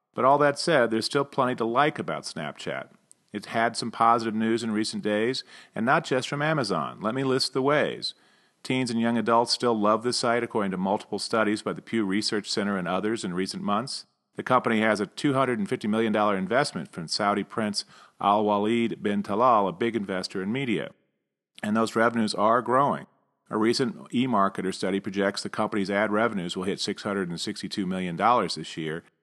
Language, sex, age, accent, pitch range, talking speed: English, male, 40-59, American, 100-115 Hz, 185 wpm